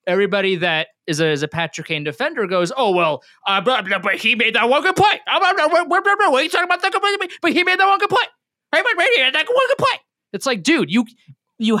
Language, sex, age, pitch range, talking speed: English, male, 30-49, 165-255 Hz, 215 wpm